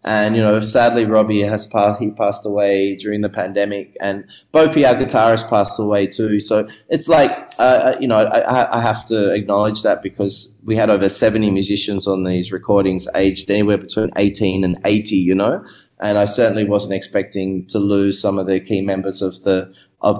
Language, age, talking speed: English, 20-39, 190 wpm